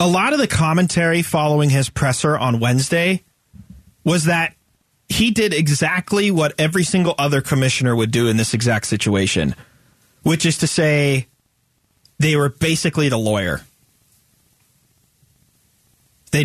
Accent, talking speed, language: American, 130 wpm, English